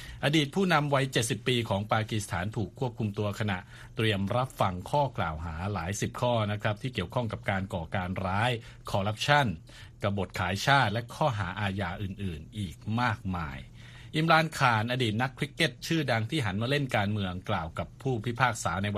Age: 60-79